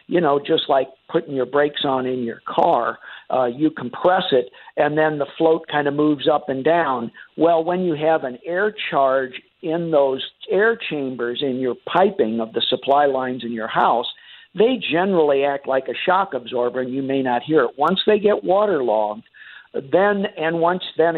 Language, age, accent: English, 50-69, American